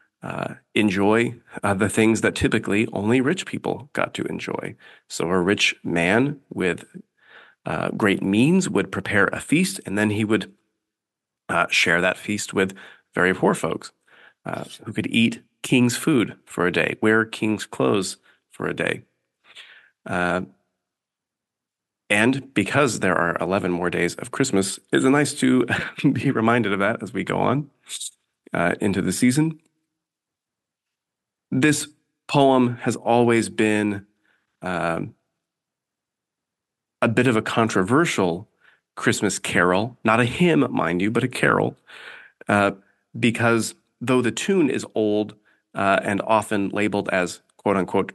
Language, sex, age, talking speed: English, male, 30-49, 140 wpm